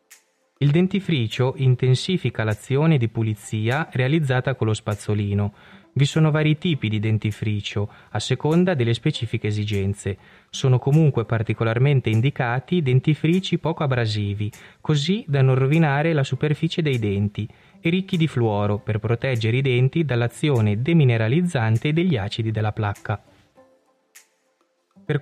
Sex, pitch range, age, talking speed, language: male, 110-150 Hz, 20-39, 120 wpm, Italian